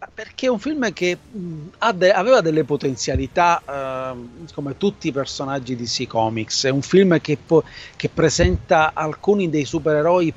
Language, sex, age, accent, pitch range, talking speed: Italian, male, 30-49, native, 135-165 Hz, 160 wpm